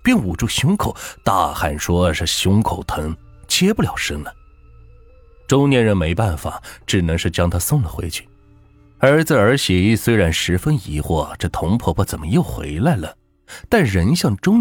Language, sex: Chinese, male